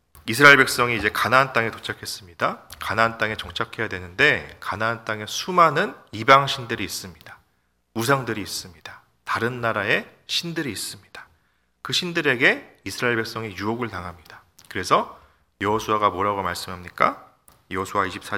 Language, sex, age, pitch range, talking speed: English, male, 40-59, 95-135 Hz, 110 wpm